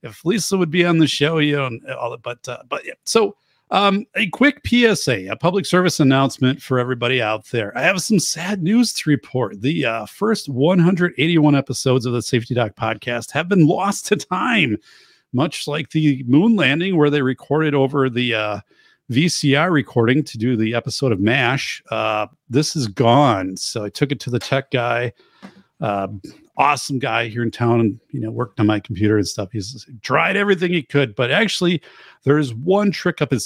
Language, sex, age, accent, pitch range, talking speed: English, male, 40-59, American, 120-160 Hz, 195 wpm